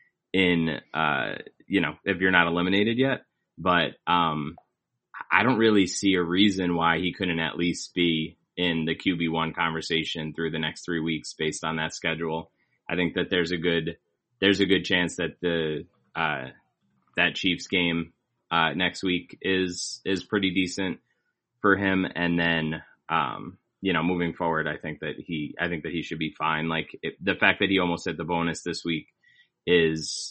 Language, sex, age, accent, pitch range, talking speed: English, male, 20-39, American, 85-100 Hz, 180 wpm